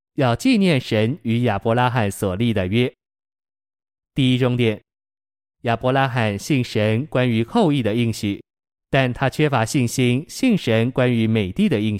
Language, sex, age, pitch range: Chinese, male, 20-39, 110-135 Hz